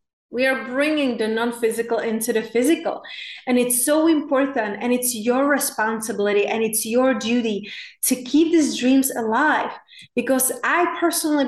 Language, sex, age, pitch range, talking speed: English, female, 30-49, 230-280 Hz, 145 wpm